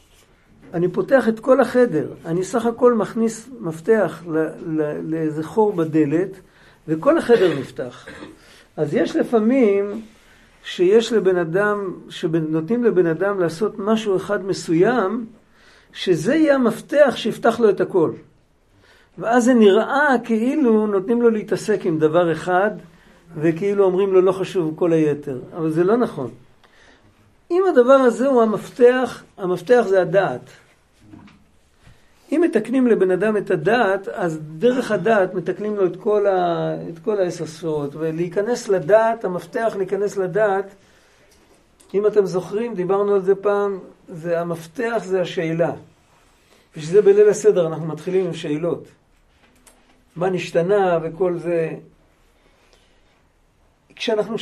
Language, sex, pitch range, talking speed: Hebrew, male, 175-230 Hz, 120 wpm